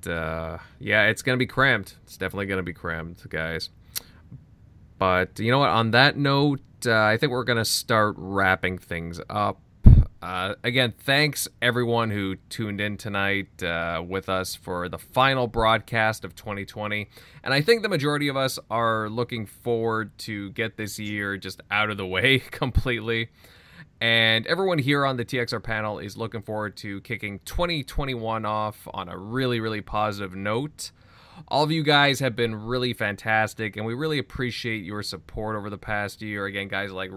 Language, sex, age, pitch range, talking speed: English, male, 20-39, 95-120 Hz, 175 wpm